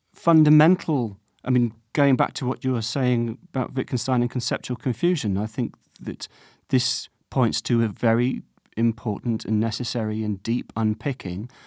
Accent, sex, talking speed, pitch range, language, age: British, male, 150 wpm, 110-135 Hz, English, 40-59